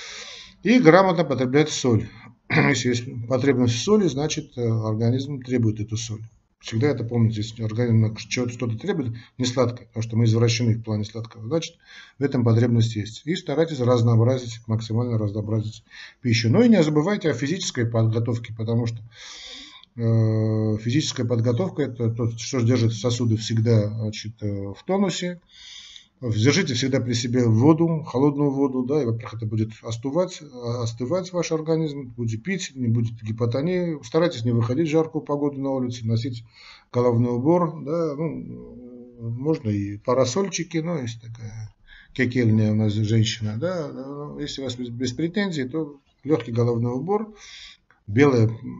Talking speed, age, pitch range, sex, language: 145 wpm, 50-69, 115-150 Hz, male, Russian